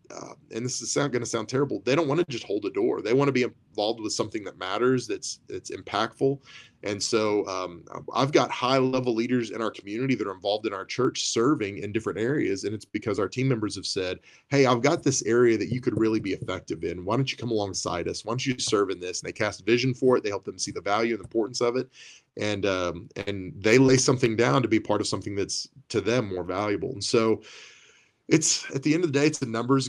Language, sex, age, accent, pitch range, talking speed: English, male, 30-49, American, 110-130 Hz, 255 wpm